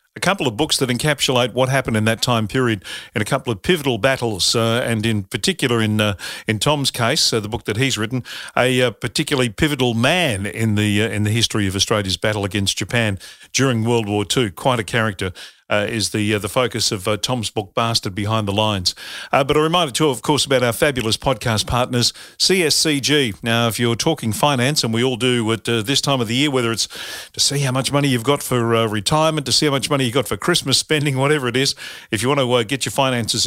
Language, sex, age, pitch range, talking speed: English, male, 50-69, 110-145 Hz, 235 wpm